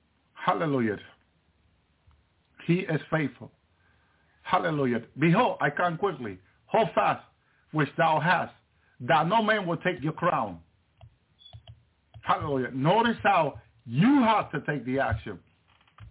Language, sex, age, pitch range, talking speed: English, male, 50-69, 110-170 Hz, 110 wpm